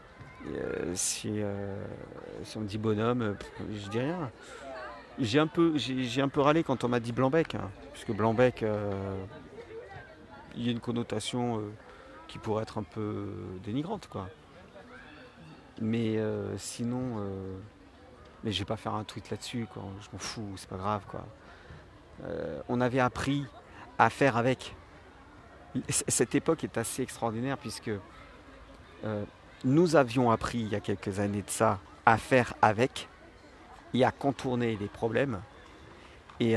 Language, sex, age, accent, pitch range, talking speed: French, male, 50-69, French, 100-125 Hz, 160 wpm